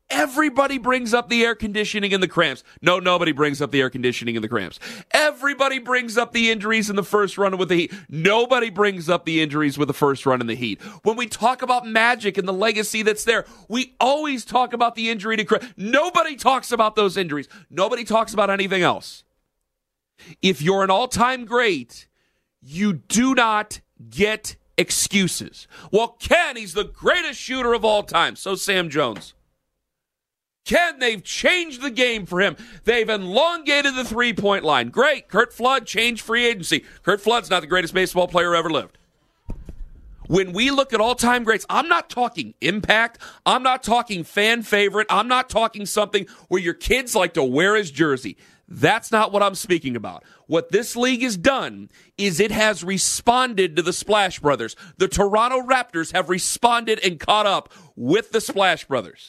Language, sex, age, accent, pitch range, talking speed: English, male, 40-59, American, 185-240 Hz, 180 wpm